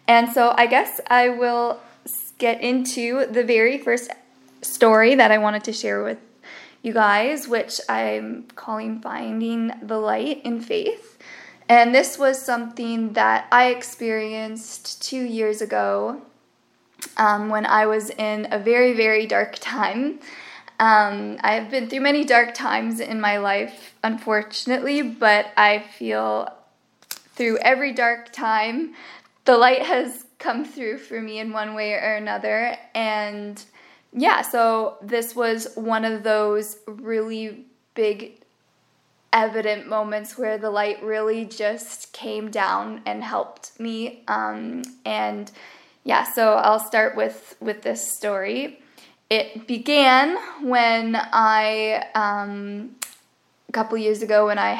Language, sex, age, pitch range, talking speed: English, female, 20-39, 215-245 Hz, 135 wpm